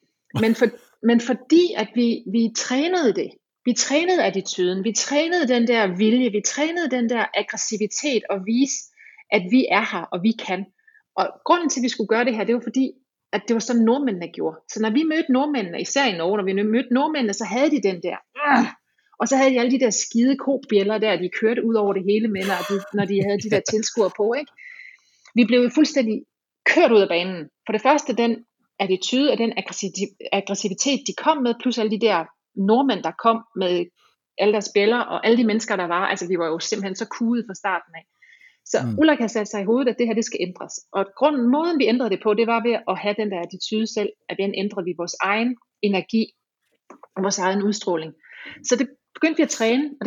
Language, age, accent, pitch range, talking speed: Danish, 30-49, native, 200-255 Hz, 220 wpm